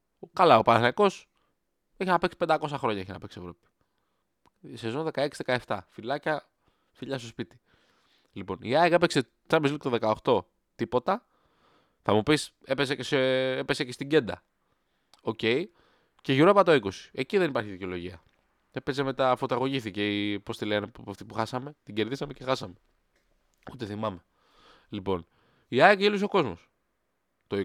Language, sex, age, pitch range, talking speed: Greek, male, 20-39, 105-165 Hz, 140 wpm